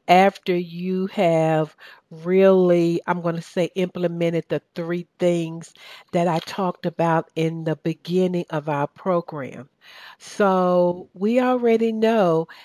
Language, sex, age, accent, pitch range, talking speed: English, female, 60-79, American, 165-200 Hz, 125 wpm